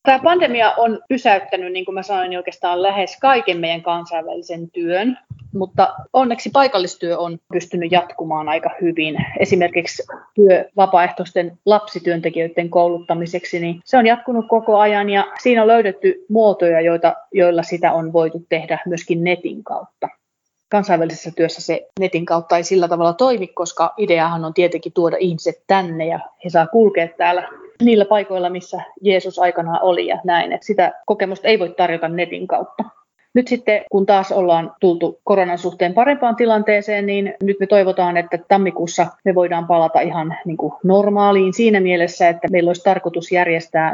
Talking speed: 155 wpm